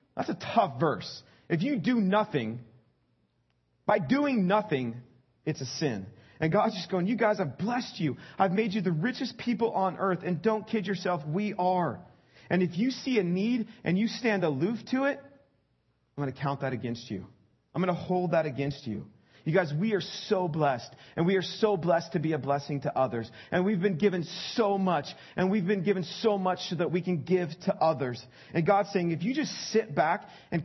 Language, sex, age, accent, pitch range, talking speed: English, male, 40-59, American, 145-205 Hz, 210 wpm